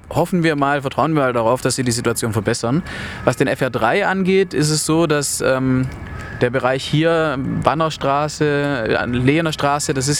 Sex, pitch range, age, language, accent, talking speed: male, 120-155 Hz, 20-39, German, German, 165 wpm